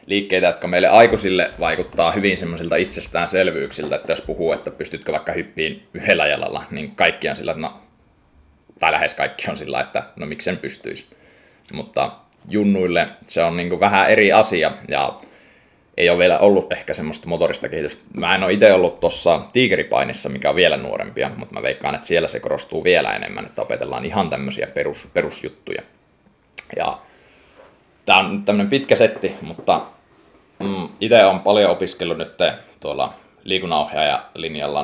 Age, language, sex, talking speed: 20-39, Finnish, male, 150 wpm